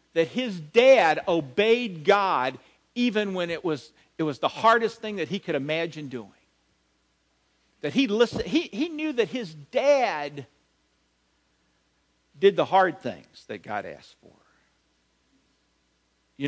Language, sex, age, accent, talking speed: English, male, 50-69, American, 135 wpm